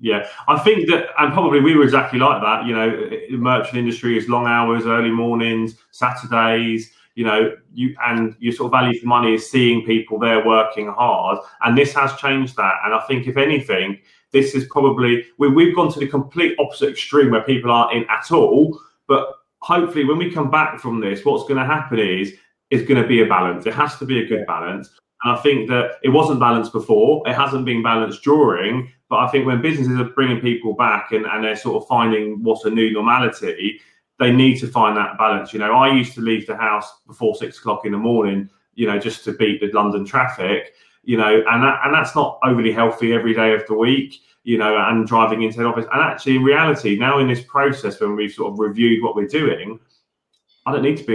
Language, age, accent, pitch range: English, 30-49, British, 110-135 Hz